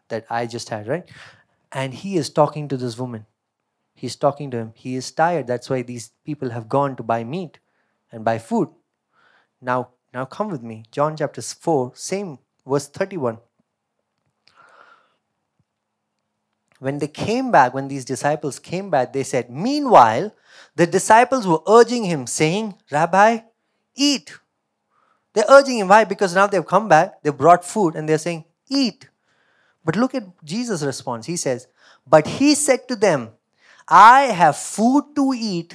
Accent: Indian